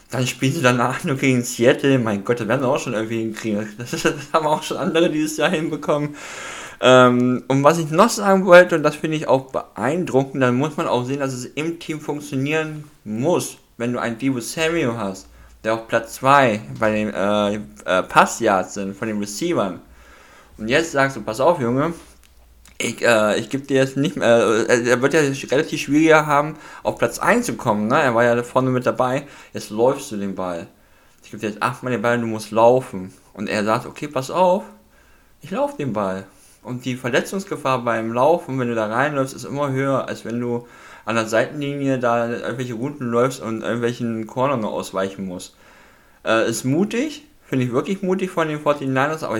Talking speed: 195 wpm